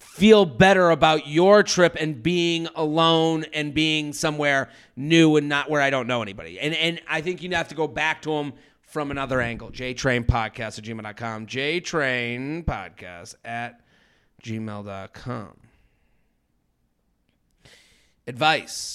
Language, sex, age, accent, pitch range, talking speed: English, male, 30-49, American, 120-155 Hz, 140 wpm